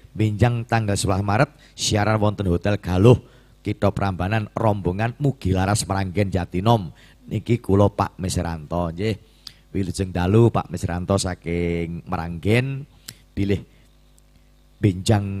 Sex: male